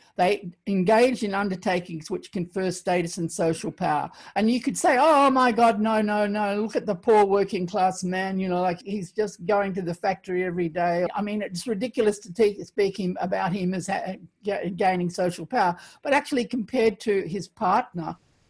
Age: 50-69